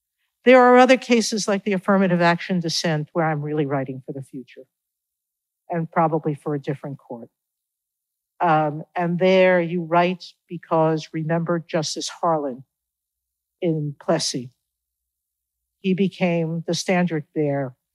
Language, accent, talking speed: English, American, 125 wpm